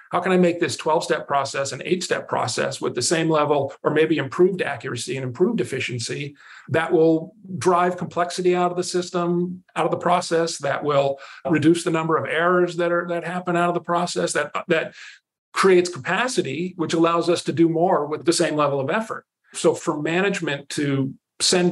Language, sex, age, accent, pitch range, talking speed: English, male, 50-69, American, 150-180 Hz, 195 wpm